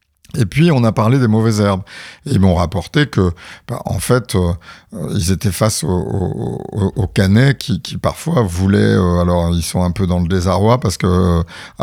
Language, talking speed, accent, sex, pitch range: French, 205 wpm, French, male, 90-120 Hz